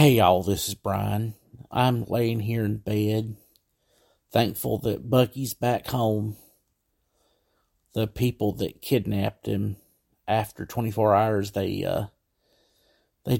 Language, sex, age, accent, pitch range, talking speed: English, male, 50-69, American, 100-120 Hz, 115 wpm